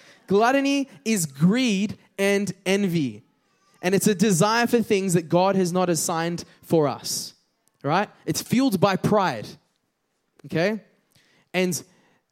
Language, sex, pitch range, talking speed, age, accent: English, male, 170-210 Hz, 120 wpm, 20-39, Australian